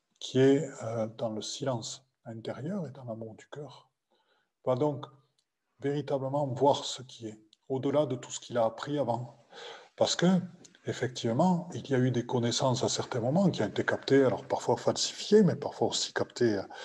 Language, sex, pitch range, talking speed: French, male, 110-140 Hz, 175 wpm